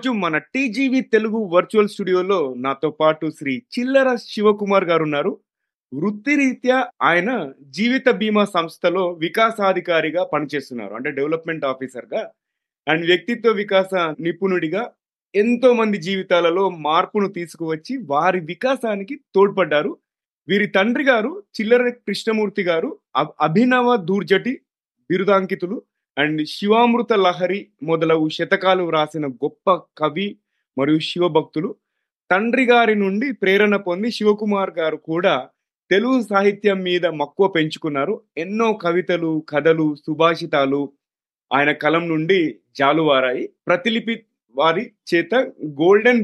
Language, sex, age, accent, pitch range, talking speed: Telugu, male, 30-49, native, 155-215 Hz, 80 wpm